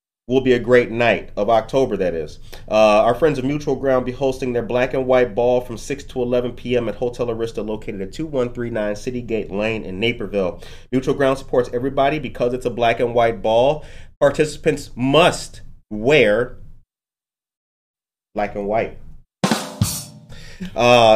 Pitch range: 115-140 Hz